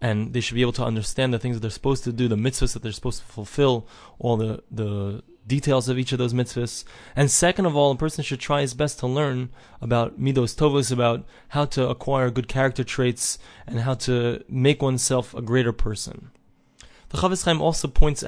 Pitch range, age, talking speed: 125-155 Hz, 20-39, 210 wpm